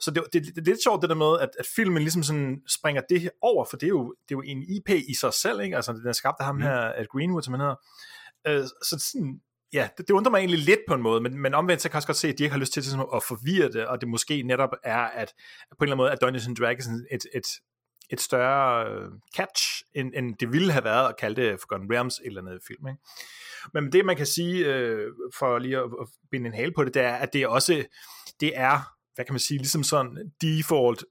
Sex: male